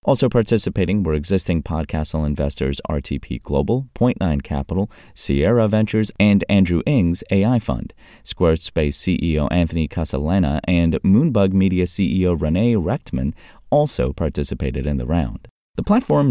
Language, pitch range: English, 75-105 Hz